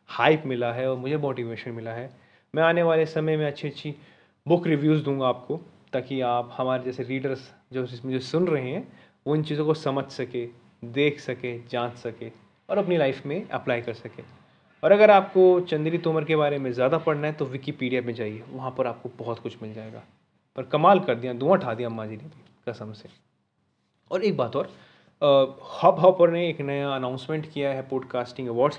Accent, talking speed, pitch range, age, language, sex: native, 195 wpm, 125-155 Hz, 30-49, Hindi, male